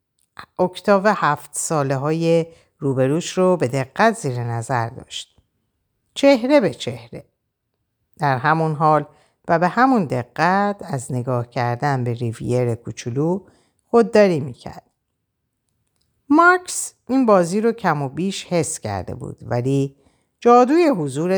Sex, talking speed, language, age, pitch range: female, 120 wpm, Persian, 50-69, 125-205 Hz